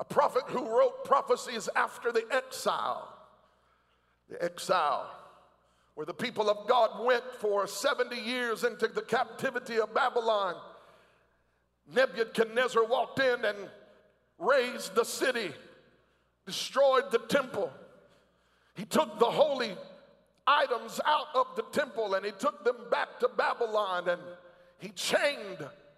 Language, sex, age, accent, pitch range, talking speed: English, male, 50-69, American, 210-310 Hz, 120 wpm